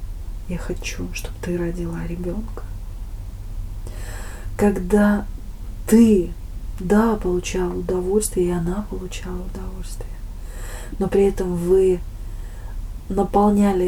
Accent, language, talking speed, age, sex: native, Russian, 85 wpm, 30-49, female